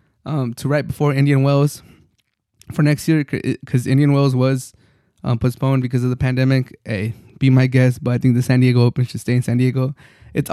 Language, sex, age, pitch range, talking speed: English, male, 20-39, 125-135 Hz, 205 wpm